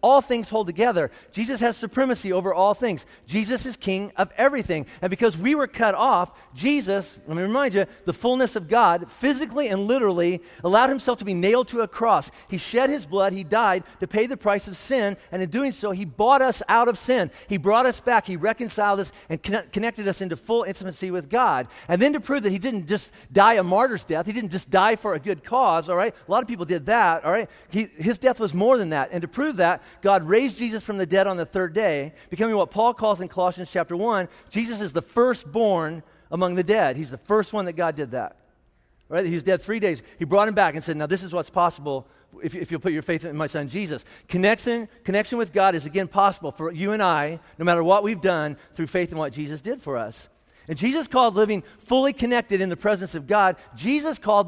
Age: 40-59